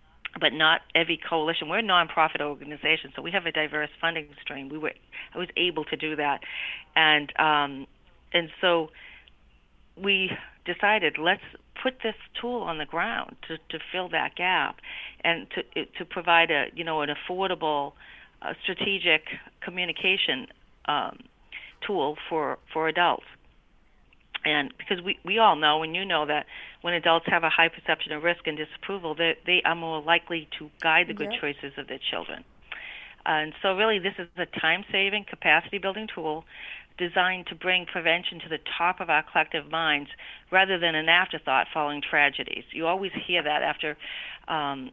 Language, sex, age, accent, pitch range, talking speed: English, female, 40-59, American, 150-180 Hz, 165 wpm